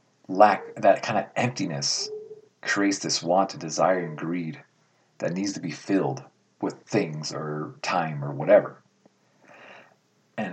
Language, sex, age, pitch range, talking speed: English, male, 40-59, 95-145 Hz, 135 wpm